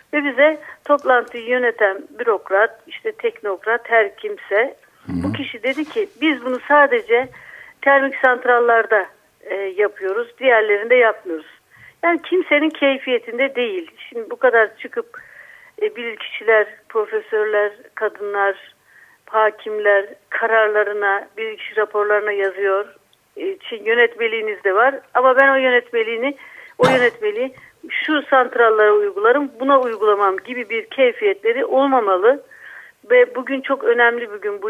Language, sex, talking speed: Turkish, female, 115 wpm